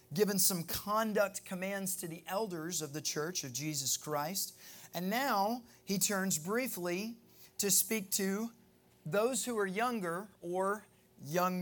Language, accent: English, American